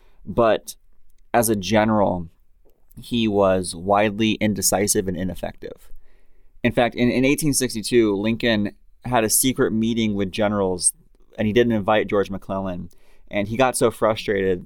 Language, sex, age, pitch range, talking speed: English, male, 30-49, 95-115 Hz, 135 wpm